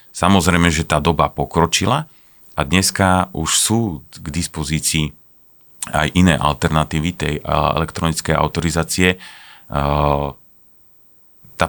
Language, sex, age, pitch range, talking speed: Slovak, male, 40-59, 75-85 Hz, 90 wpm